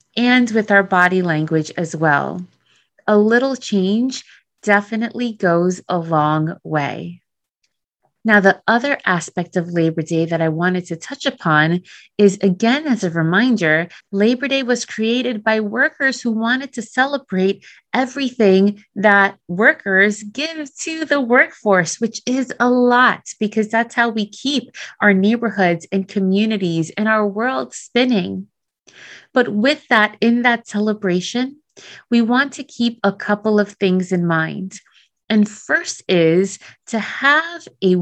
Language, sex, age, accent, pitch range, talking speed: English, female, 30-49, American, 180-245 Hz, 140 wpm